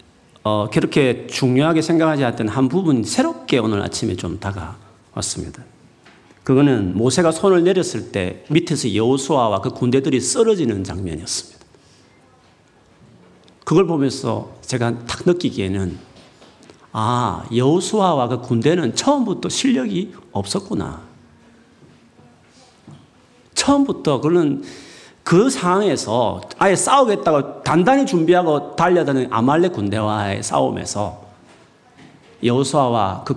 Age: 40-59